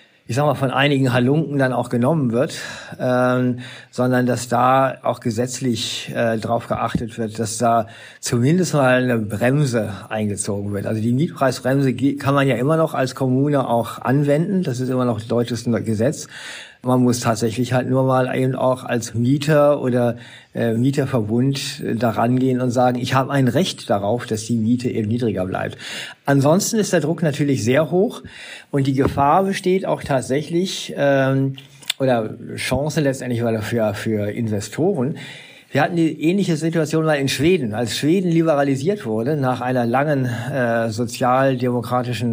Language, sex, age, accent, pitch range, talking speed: German, male, 50-69, German, 120-145 Hz, 160 wpm